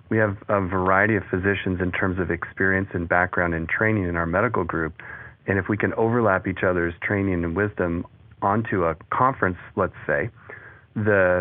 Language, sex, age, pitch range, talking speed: English, male, 40-59, 90-105 Hz, 180 wpm